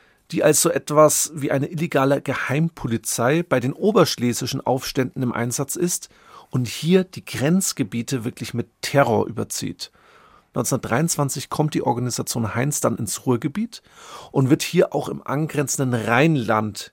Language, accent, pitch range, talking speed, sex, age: German, German, 120-155 Hz, 135 wpm, male, 40-59